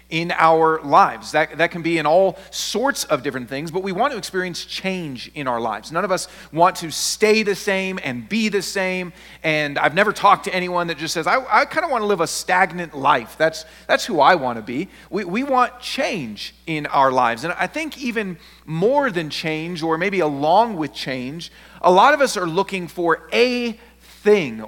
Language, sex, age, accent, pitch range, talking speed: English, male, 40-59, American, 160-205 Hz, 215 wpm